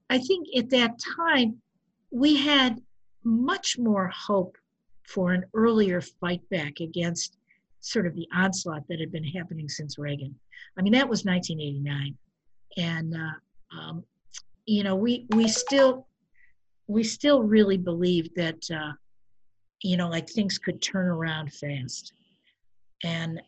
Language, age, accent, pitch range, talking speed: English, 50-69, American, 165-225 Hz, 140 wpm